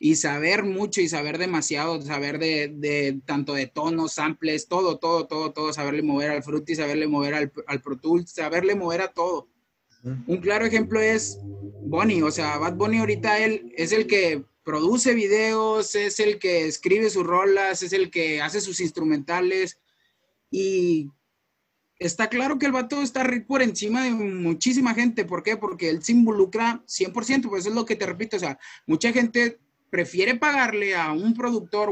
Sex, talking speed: male, 175 wpm